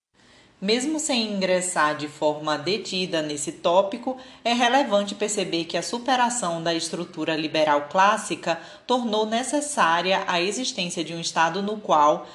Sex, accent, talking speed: female, Brazilian, 130 wpm